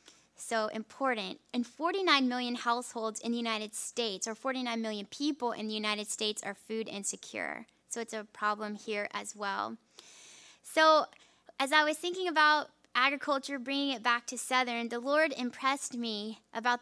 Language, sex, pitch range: English, female, 225-280 Hz